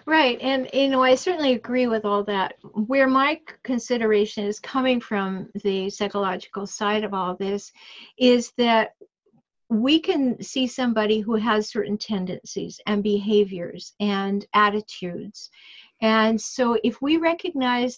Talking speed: 135 wpm